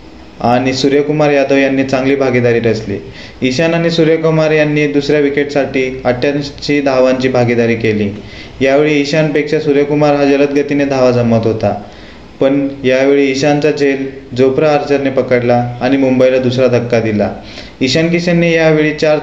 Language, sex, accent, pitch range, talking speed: Marathi, male, native, 125-150 Hz, 85 wpm